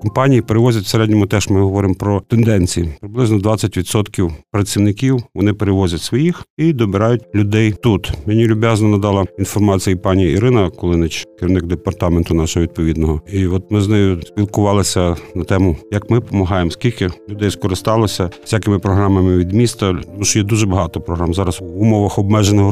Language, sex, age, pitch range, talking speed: Ukrainian, male, 50-69, 95-110 Hz, 155 wpm